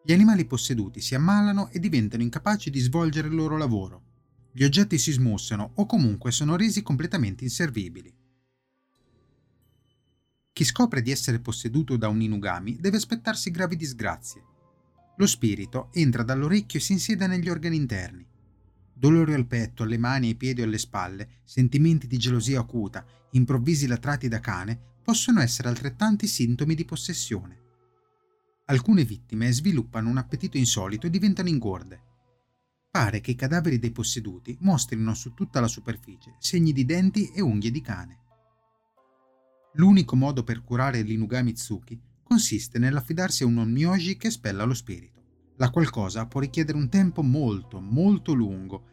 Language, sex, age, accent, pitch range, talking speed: Italian, male, 30-49, native, 115-160 Hz, 145 wpm